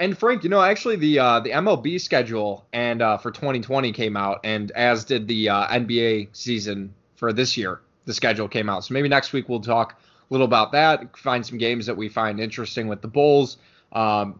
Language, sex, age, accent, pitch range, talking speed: English, male, 20-39, American, 110-135 Hz, 215 wpm